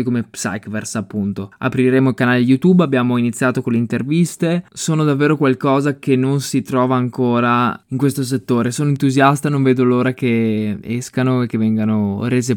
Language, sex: Italian, male